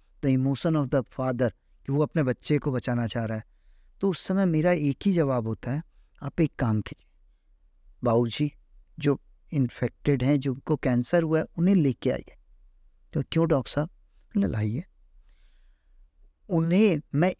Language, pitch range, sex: Hindi, 135-195 Hz, male